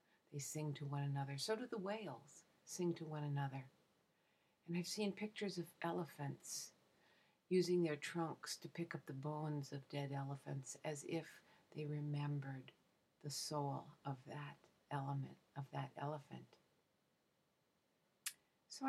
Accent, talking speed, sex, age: American, 135 wpm, female, 60-79